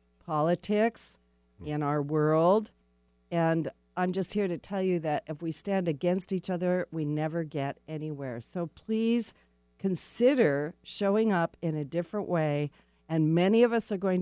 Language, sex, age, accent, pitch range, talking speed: English, female, 50-69, American, 145-185 Hz, 155 wpm